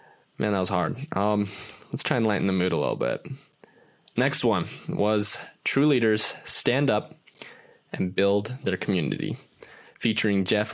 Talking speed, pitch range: 150 wpm, 105-140 Hz